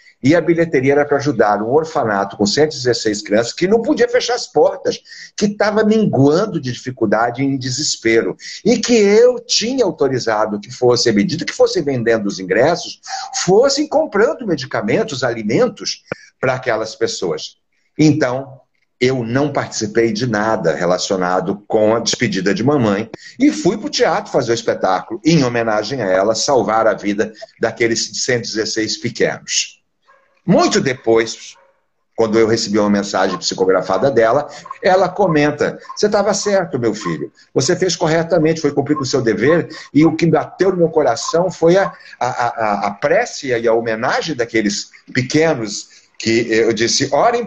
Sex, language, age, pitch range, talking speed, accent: male, Portuguese, 60-79, 115-180 Hz, 155 wpm, Brazilian